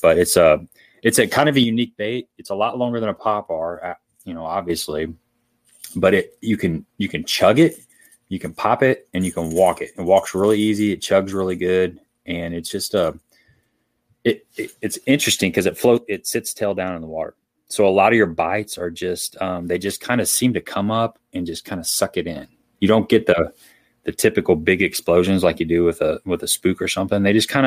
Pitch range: 90-115 Hz